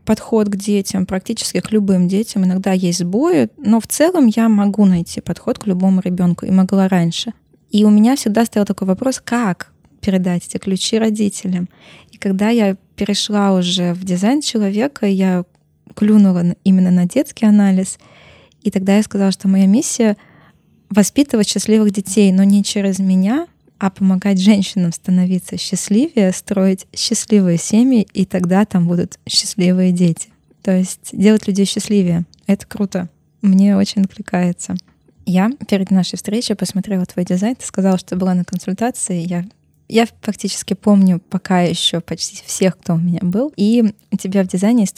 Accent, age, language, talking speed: native, 20-39, Russian, 155 wpm